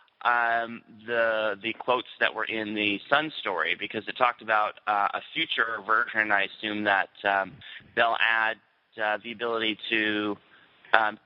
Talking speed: 155 wpm